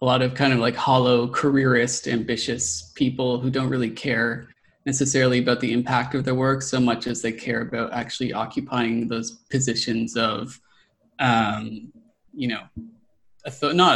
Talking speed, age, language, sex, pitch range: 155 wpm, 20-39, English, male, 120-135 Hz